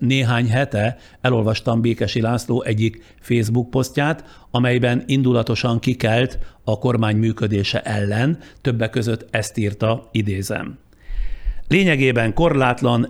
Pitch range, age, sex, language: 110-125 Hz, 60-79, male, Hungarian